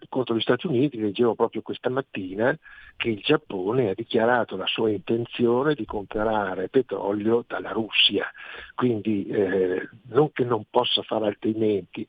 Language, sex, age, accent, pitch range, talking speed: Italian, male, 60-79, native, 105-130 Hz, 145 wpm